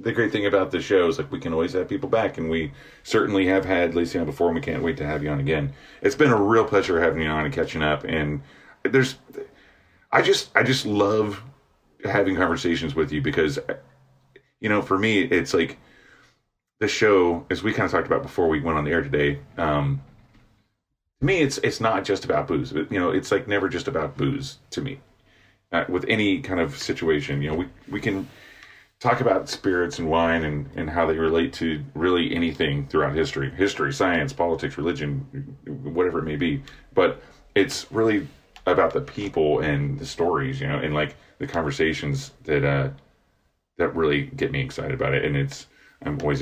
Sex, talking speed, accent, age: male, 205 wpm, American, 30-49